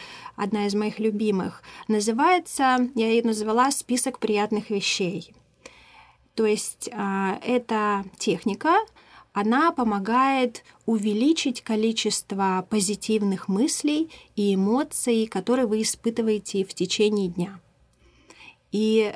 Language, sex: Russian, female